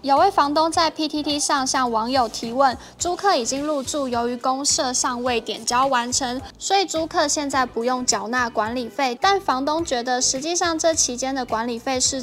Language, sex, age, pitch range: Chinese, female, 10-29, 240-300 Hz